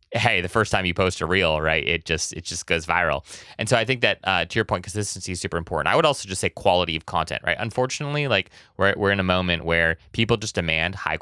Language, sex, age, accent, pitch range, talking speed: English, male, 20-39, American, 85-110 Hz, 260 wpm